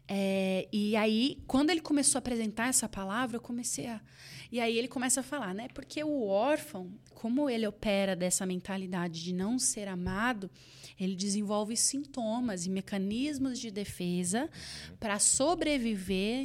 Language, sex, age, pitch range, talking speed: Portuguese, female, 20-39, 190-240 Hz, 150 wpm